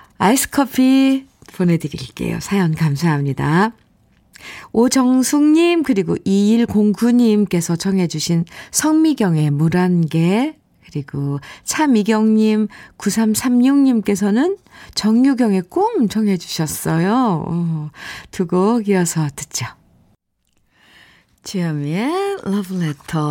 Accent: native